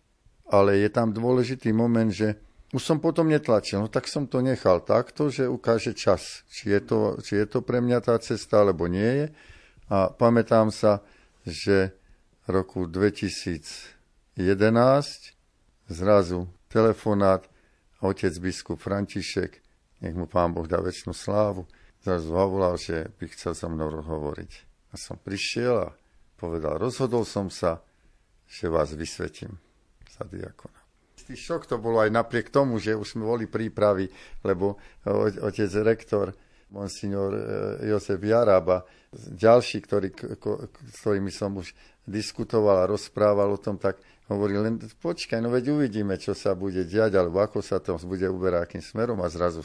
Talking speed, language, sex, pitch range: 145 wpm, Slovak, male, 95-115 Hz